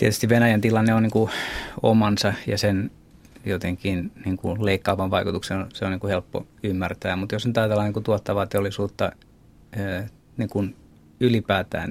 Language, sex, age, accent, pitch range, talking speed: Finnish, male, 30-49, native, 95-105 Hz, 140 wpm